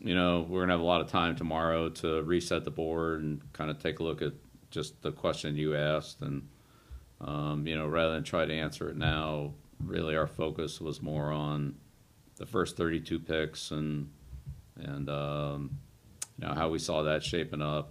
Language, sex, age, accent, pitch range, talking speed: English, male, 50-69, American, 75-85 Hz, 195 wpm